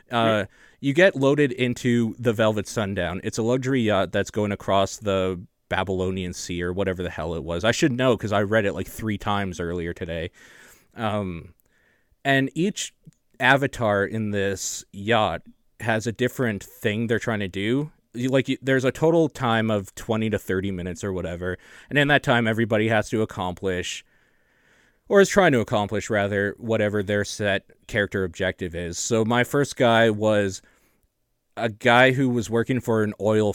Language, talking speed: English, 175 wpm